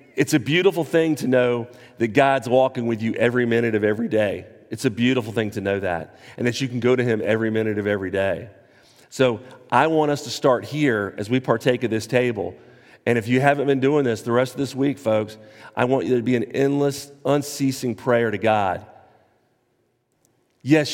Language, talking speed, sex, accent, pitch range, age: English, 210 wpm, male, American, 110-140 Hz, 40-59